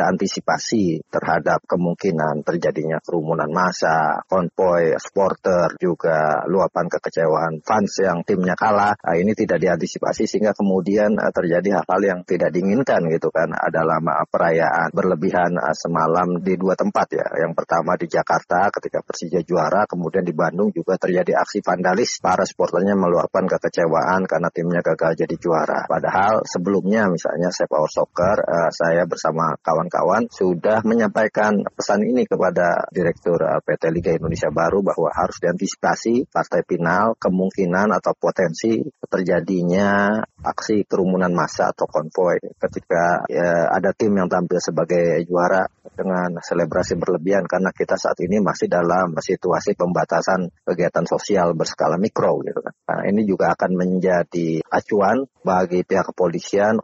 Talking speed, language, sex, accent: 130 wpm, Indonesian, male, native